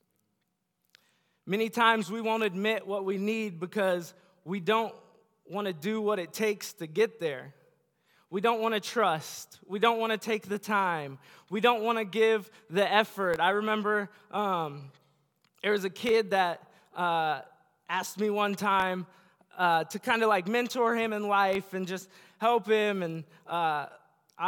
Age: 20-39